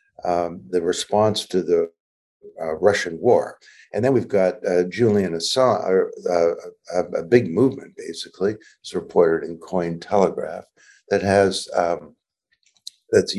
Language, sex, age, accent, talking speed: English, male, 60-79, American, 135 wpm